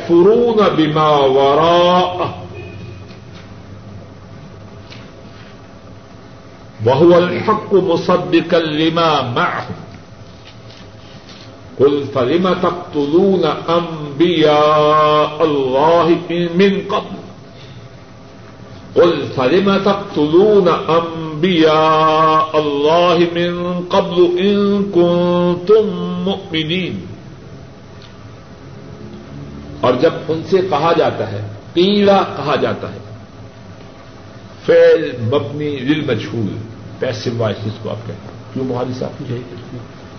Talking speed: 75 wpm